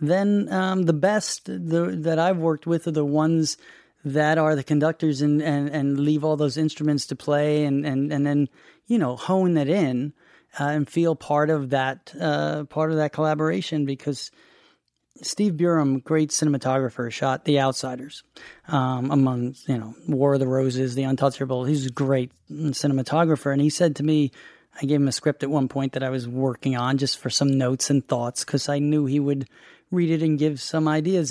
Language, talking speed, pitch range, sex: English, 195 wpm, 135-155 Hz, male